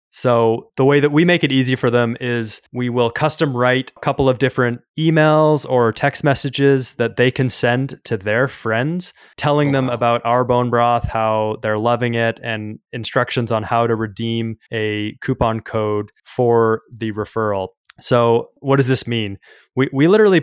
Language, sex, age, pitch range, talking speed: English, male, 20-39, 110-130 Hz, 175 wpm